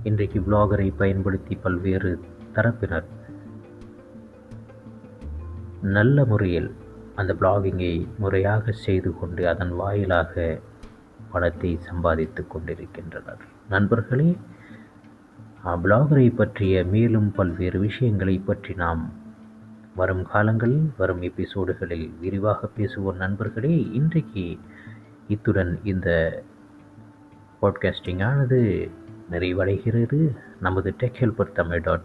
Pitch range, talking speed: 95-110 Hz, 80 wpm